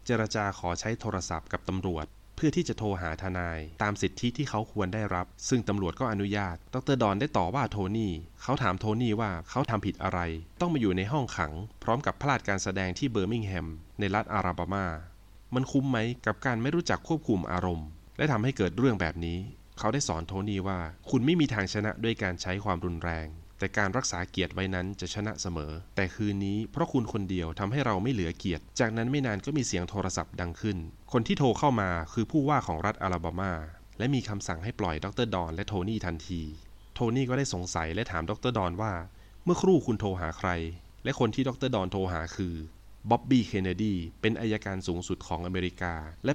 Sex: male